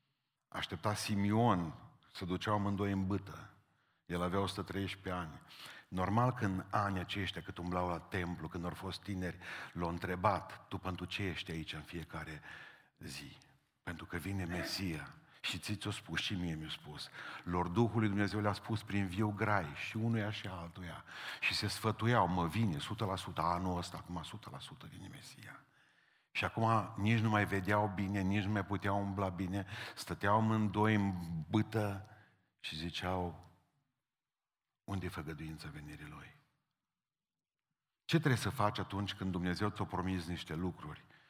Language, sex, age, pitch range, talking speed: Romanian, male, 50-69, 90-105 Hz, 150 wpm